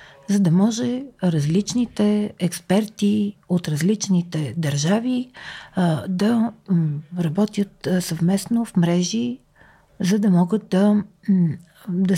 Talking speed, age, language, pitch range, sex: 90 wpm, 50-69, Bulgarian, 155-200 Hz, female